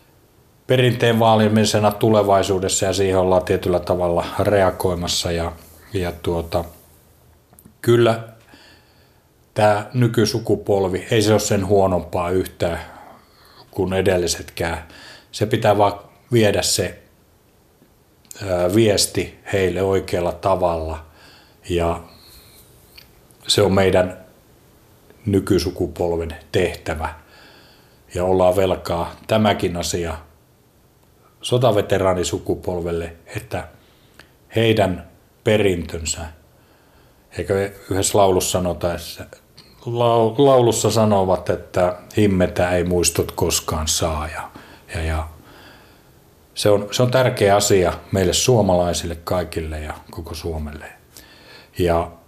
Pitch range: 85-105 Hz